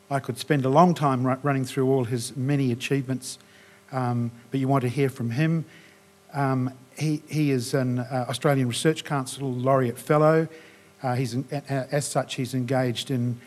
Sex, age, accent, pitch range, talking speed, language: male, 50-69, Australian, 120-135 Hz, 175 wpm, English